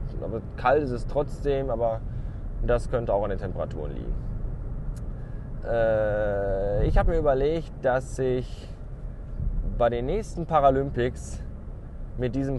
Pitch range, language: 100-130 Hz, German